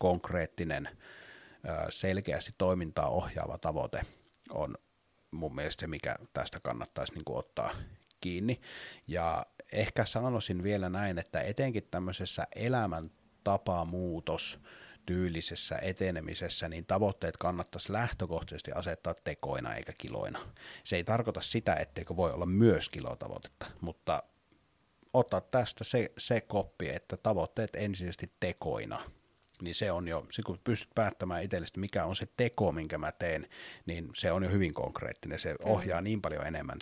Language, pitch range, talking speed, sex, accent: Finnish, 85-105 Hz, 130 wpm, male, native